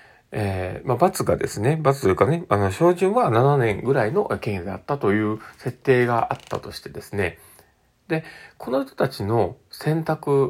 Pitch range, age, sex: 100-145 Hz, 40-59, male